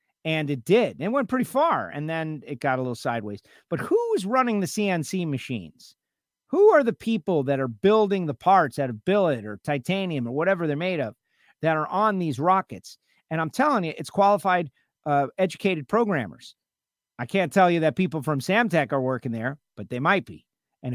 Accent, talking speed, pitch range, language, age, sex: American, 200 wpm, 130-180 Hz, English, 50-69, male